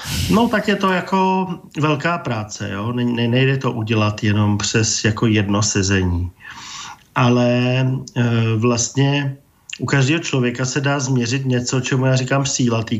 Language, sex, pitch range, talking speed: Slovak, male, 105-130 Hz, 150 wpm